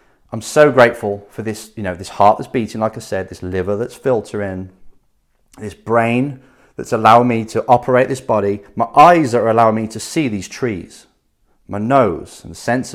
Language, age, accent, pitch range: English, 30-49, British, 105-130 Hz